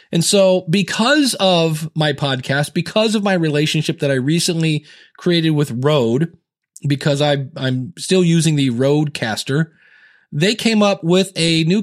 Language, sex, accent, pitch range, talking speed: English, male, American, 155-195 Hz, 145 wpm